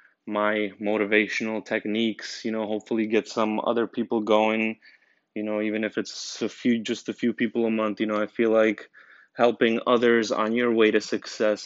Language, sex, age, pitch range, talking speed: English, male, 20-39, 105-115 Hz, 185 wpm